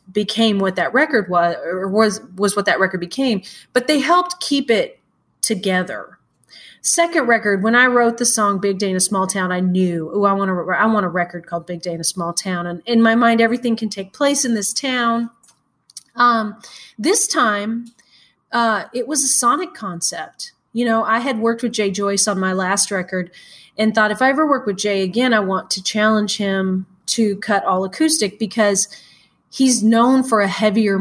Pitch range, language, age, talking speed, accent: 190-235 Hz, English, 30-49, 205 wpm, American